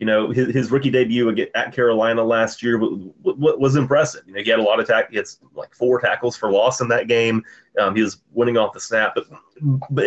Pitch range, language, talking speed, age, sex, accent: 115-135 Hz, English, 230 wpm, 30-49, male, American